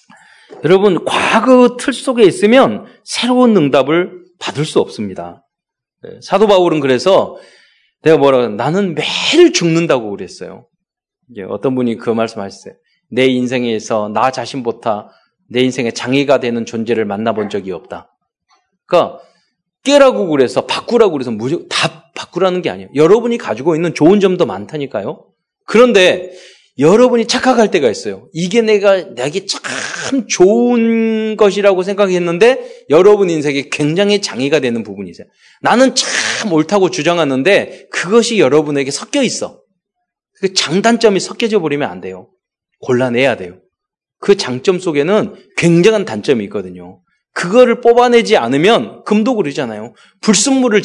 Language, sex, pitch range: Korean, male, 140-225 Hz